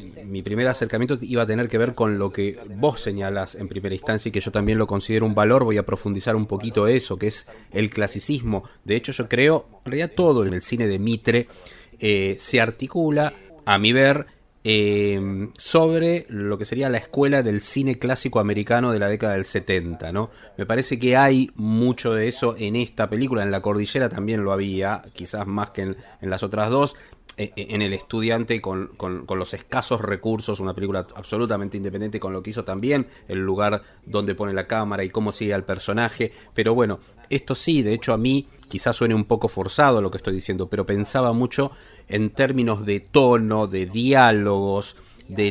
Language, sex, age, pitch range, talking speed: Spanish, male, 30-49, 100-125 Hz, 195 wpm